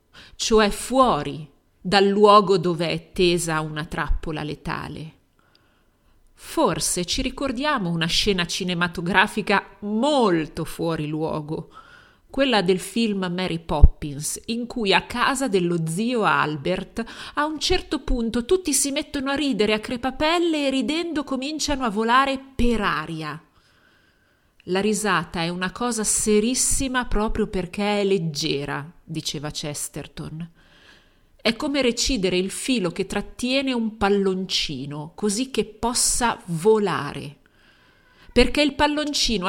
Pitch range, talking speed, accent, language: 165-240 Hz, 115 wpm, native, Italian